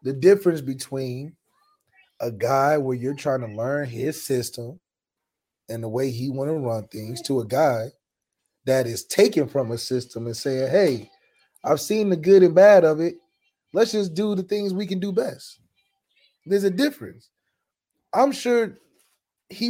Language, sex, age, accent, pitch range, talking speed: English, male, 30-49, American, 140-230 Hz, 170 wpm